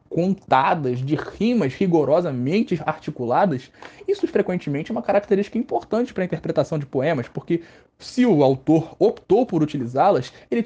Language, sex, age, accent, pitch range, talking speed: Portuguese, male, 20-39, Brazilian, 145-190 Hz, 135 wpm